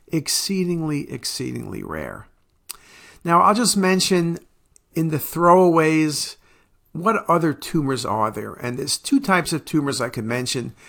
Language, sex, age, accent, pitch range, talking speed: English, male, 50-69, American, 125-165 Hz, 130 wpm